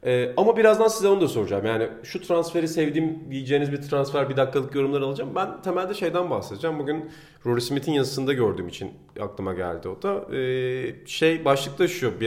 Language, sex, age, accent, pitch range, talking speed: Turkish, male, 40-59, native, 130-180 Hz, 180 wpm